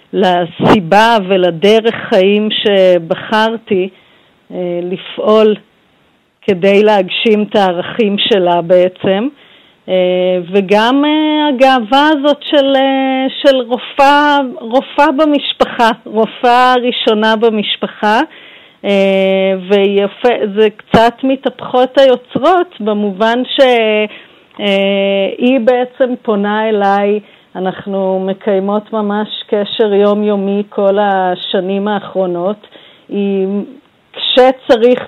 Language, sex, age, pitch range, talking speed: Hebrew, female, 40-59, 195-240 Hz, 80 wpm